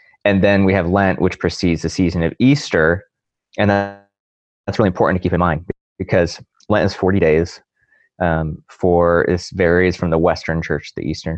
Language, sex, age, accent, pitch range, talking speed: English, male, 20-39, American, 80-95 Hz, 185 wpm